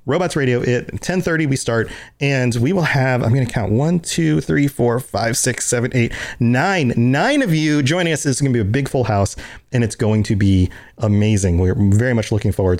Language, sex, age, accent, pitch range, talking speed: English, male, 30-49, American, 115-155 Hz, 225 wpm